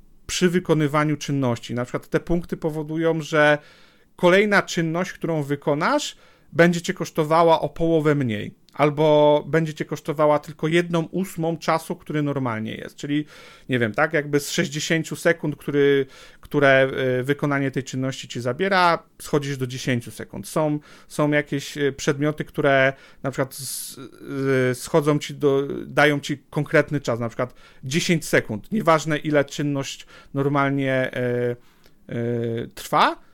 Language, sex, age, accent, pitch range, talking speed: Polish, male, 40-59, native, 140-170 Hz, 135 wpm